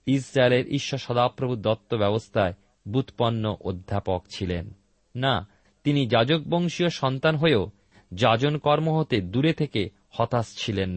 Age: 30-49